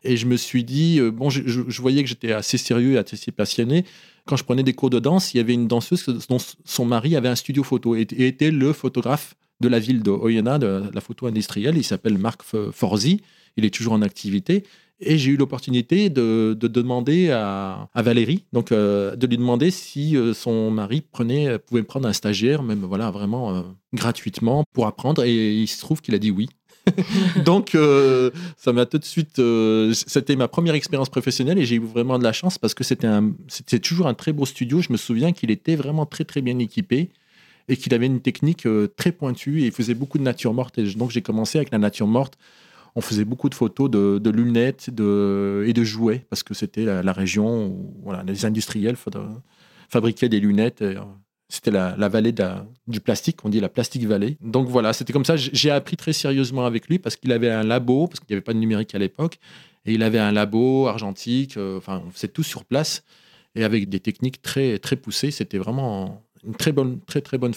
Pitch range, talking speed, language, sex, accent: 110-145 Hz, 225 wpm, French, male, French